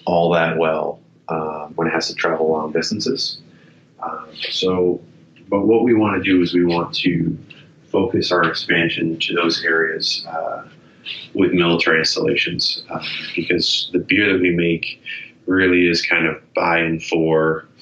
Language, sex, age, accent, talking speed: English, male, 30-49, American, 155 wpm